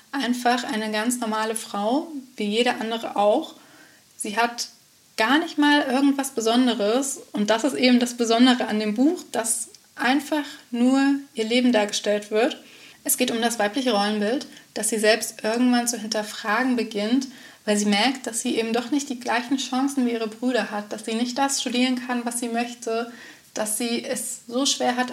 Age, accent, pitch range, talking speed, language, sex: 20-39, German, 220-255 Hz, 180 wpm, German, female